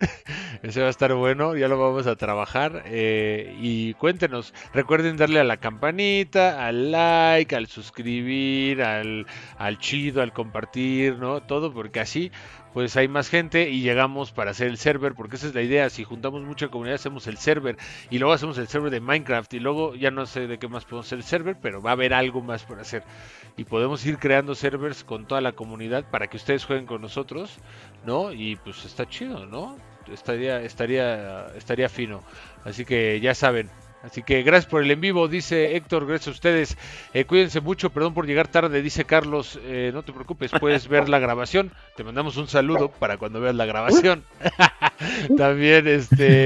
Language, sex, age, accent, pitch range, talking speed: Spanish, male, 40-59, Mexican, 120-150 Hz, 190 wpm